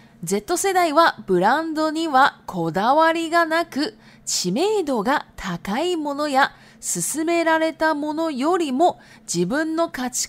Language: Japanese